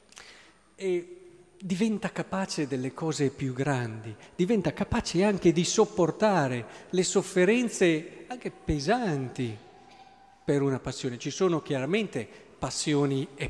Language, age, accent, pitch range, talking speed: Italian, 50-69, native, 140-185 Hz, 105 wpm